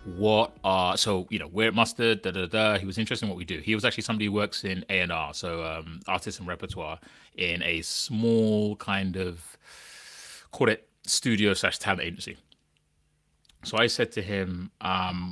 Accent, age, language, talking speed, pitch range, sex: British, 30-49, English, 200 wpm, 90-110 Hz, male